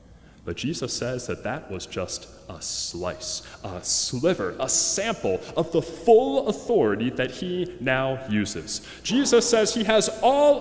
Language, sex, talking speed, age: English, male, 145 wpm, 30-49